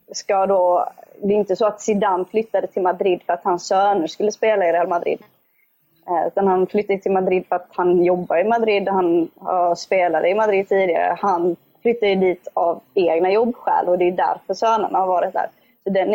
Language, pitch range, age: Swedish, 180-205 Hz, 20-39